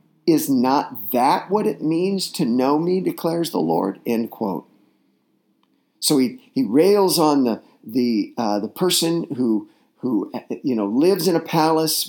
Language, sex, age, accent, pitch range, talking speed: English, male, 50-69, American, 120-180 Hz, 160 wpm